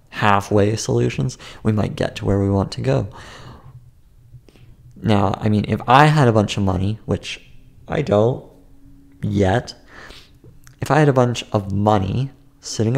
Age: 30-49